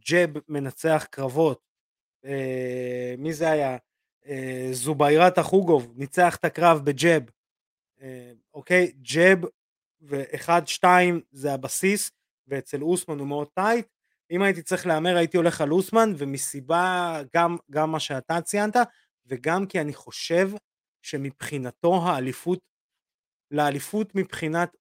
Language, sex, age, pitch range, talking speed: Hebrew, male, 30-49, 130-180 Hz, 115 wpm